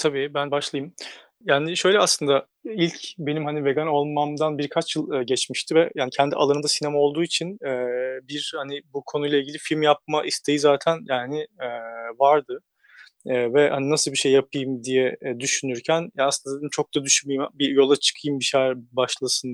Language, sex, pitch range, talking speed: Turkish, male, 130-155 Hz, 155 wpm